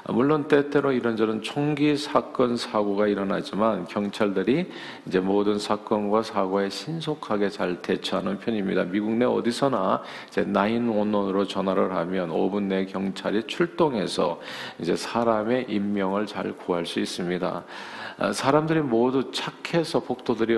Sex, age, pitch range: male, 50-69, 100-130 Hz